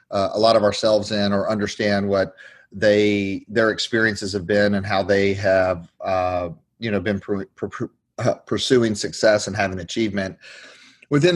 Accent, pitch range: American, 100-125 Hz